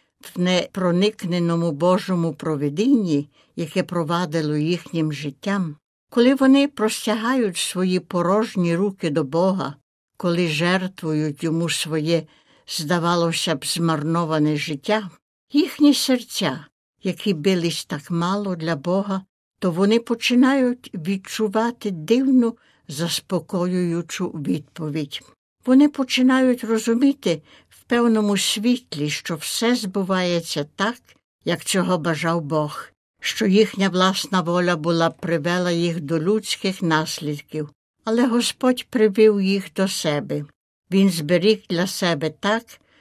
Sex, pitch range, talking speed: female, 165-215 Hz, 100 wpm